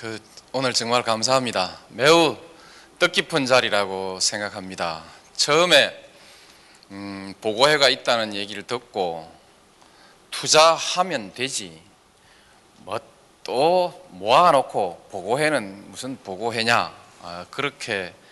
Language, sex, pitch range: Korean, male, 90-115 Hz